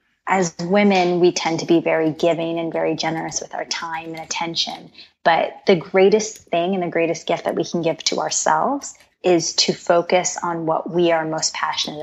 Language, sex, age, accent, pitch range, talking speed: English, female, 20-39, American, 165-195 Hz, 195 wpm